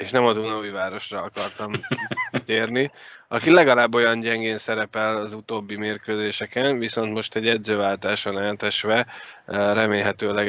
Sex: male